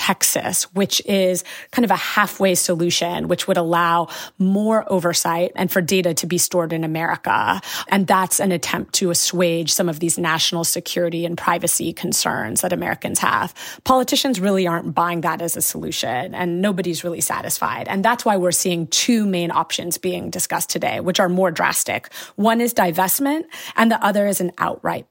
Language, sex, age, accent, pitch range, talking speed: English, female, 30-49, American, 175-210 Hz, 175 wpm